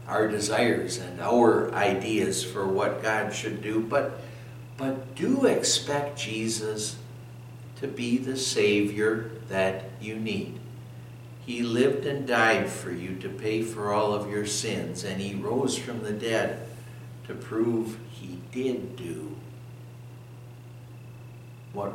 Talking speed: 130 wpm